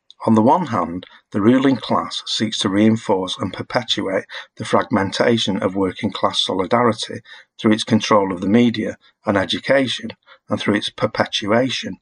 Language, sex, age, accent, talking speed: English, male, 50-69, British, 150 wpm